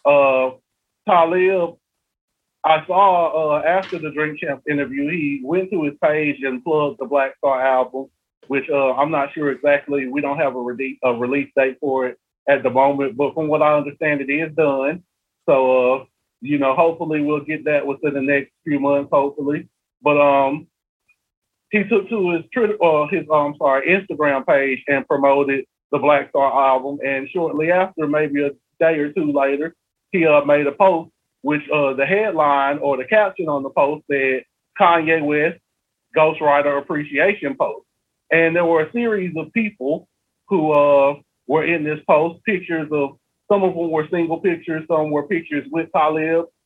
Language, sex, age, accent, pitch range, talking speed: English, male, 30-49, American, 140-170 Hz, 175 wpm